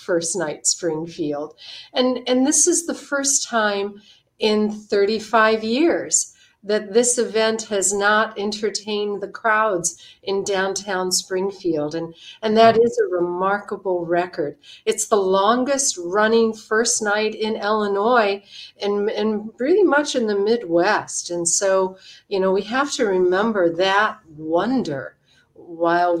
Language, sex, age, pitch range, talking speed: English, female, 50-69, 170-220 Hz, 130 wpm